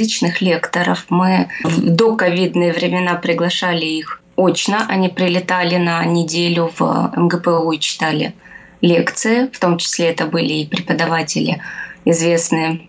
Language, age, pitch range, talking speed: Russian, 20-39, 170-195 Hz, 120 wpm